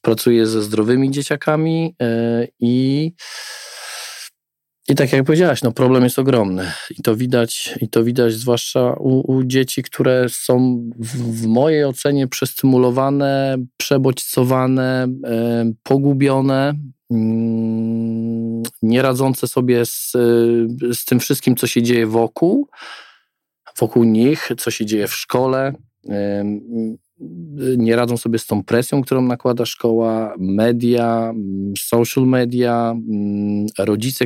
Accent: native